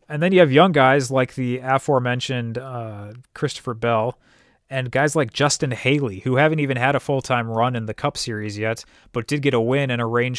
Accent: American